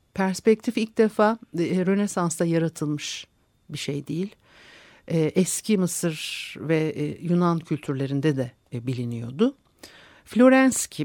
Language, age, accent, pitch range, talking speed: Turkish, 60-79, native, 140-195 Hz, 85 wpm